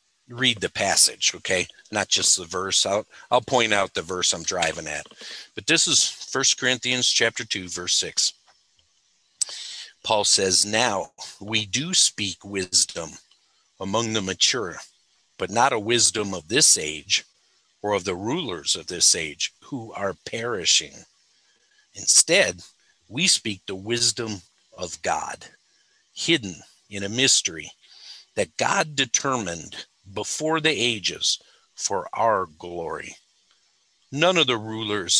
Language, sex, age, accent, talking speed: English, male, 50-69, American, 130 wpm